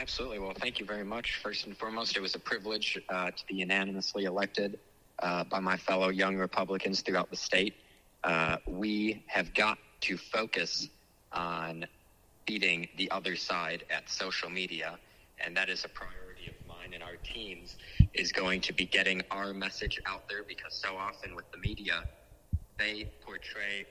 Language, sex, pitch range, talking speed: English, male, 90-105 Hz, 170 wpm